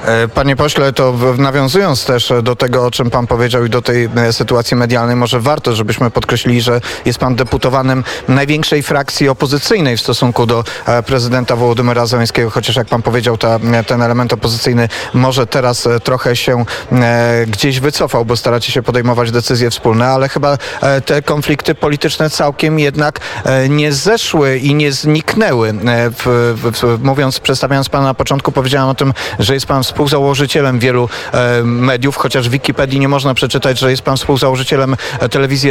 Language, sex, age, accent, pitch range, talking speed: Polish, male, 30-49, native, 120-140 Hz, 155 wpm